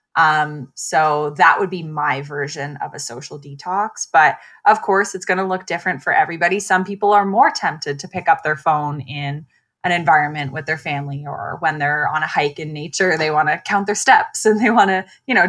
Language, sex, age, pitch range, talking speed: English, female, 20-39, 155-200 Hz, 220 wpm